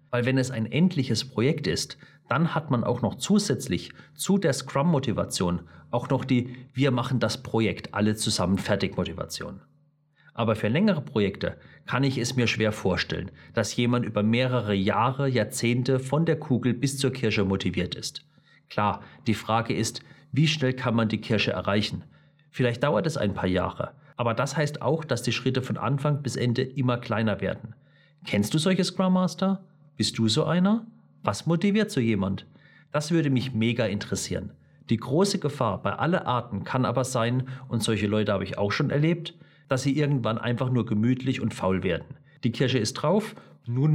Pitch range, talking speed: 110-140 Hz, 175 wpm